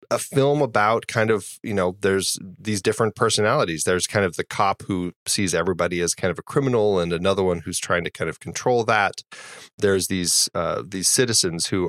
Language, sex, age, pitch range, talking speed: English, male, 30-49, 90-105 Hz, 200 wpm